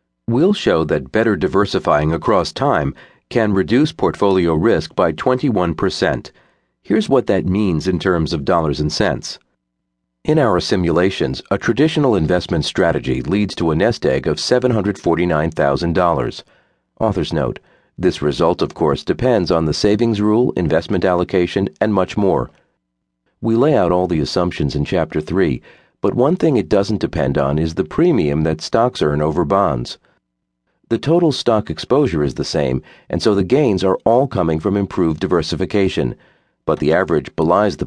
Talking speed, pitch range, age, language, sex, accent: 155 wpm, 70-100 Hz, 50-69, English, male, American